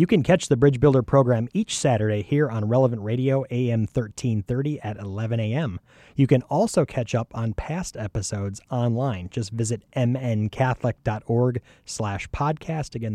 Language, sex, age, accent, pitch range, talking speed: English, male, 30-49, American, 105-135 Hz, 150 wpm